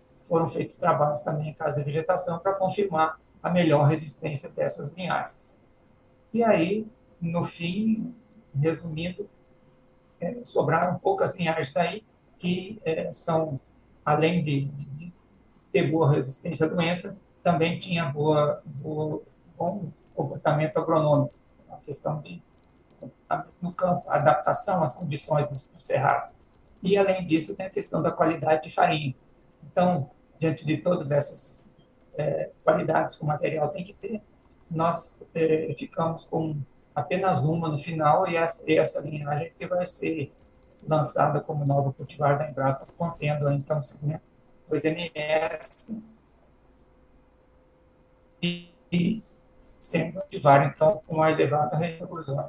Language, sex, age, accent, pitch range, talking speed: Portuguese, male, 60-79, Brazilian, 150-175 Hz, 135 wpm